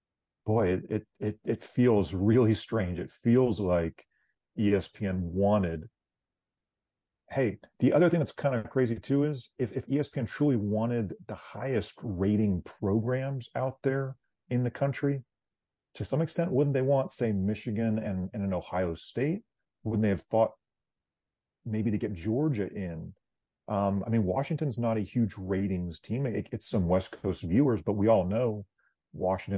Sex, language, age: male, English, 40-59